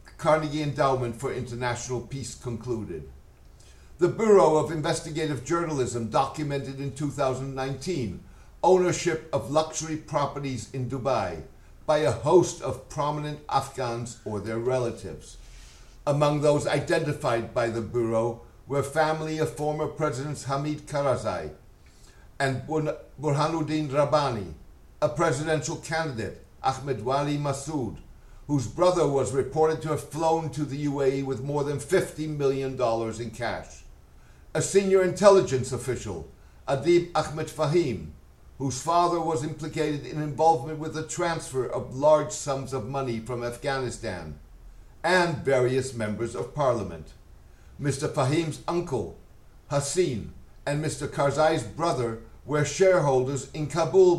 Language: English